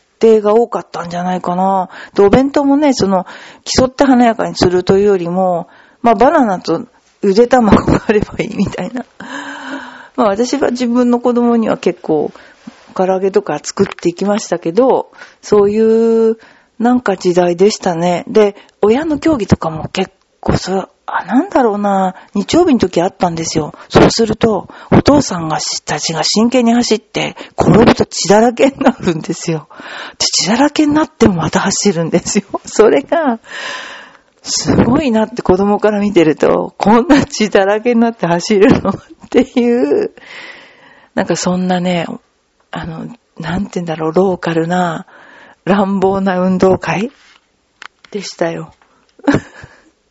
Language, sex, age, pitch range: Japanese, female, 40-59, 180-245 Hz